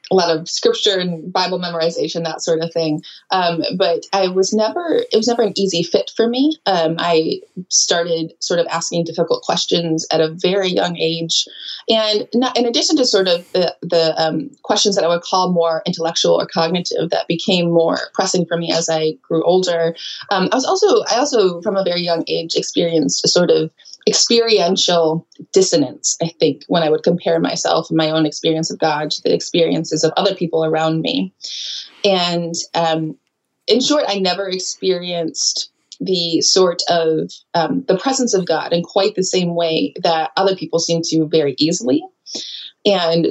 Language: English